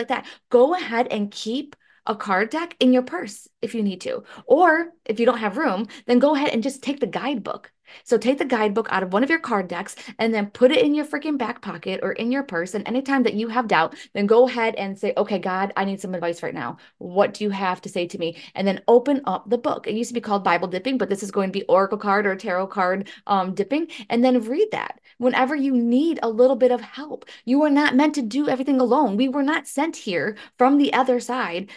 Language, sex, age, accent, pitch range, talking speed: English, female, 20-39, American, 205-270 Hz, 255 wpm